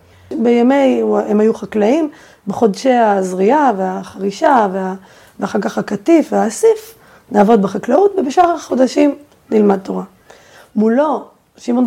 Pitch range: 200-285 Hz